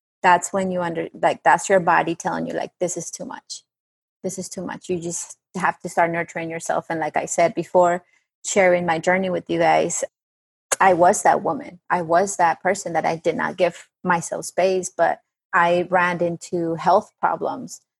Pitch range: 170-190 Hz